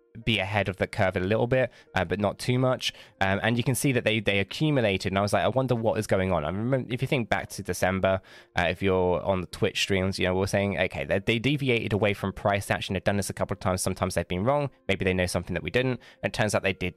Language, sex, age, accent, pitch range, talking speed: English, male, 20-39, British, 95-115 Hz, 295 wpm